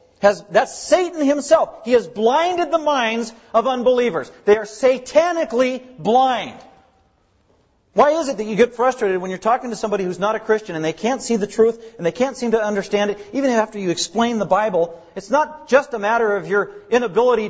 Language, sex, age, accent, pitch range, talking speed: English, male, 40-59, American, 195-255 Hz, 200 wpm